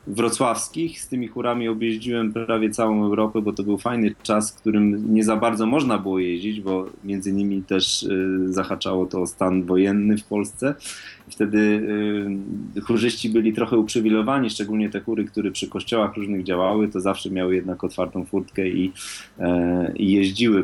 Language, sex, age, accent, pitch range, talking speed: Polish, male, 20-39, native, 95-115 Hz, 160 wpm